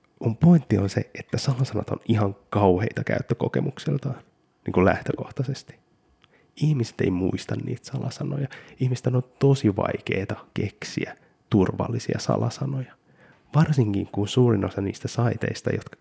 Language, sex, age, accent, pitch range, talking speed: Finnish, male, 20-39, native, 105-135 Hz, 120 wpm